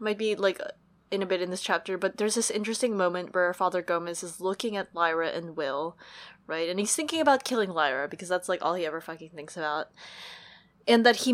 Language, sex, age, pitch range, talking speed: English, female, 20-39, 175-225 Hz, 220 wpm